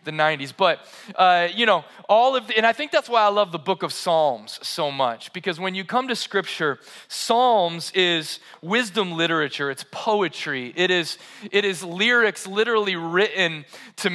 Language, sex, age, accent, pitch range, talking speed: English, male, 30-49, American, 175-210 Hz, 180 wpm